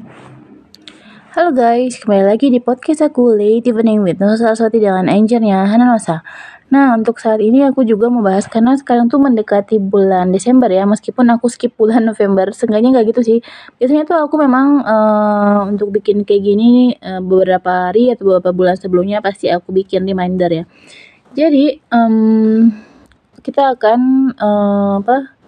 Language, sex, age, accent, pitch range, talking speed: Indonesian, female, 20-39, native, 200-250 Hz, 155 wpm